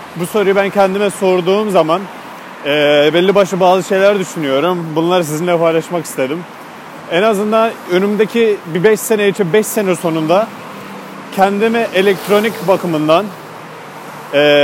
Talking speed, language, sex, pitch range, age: 120 wpm, Turkish, male, 170-215 Hz, 40-59